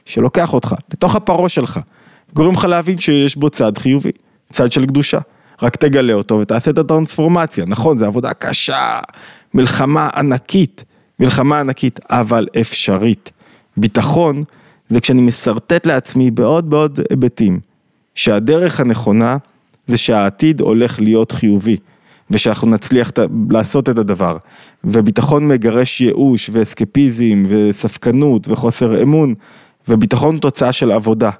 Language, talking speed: Hebrew, 120 wpm